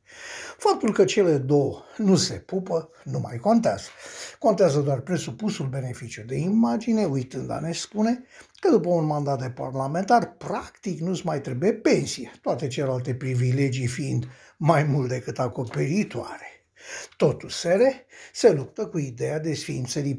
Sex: male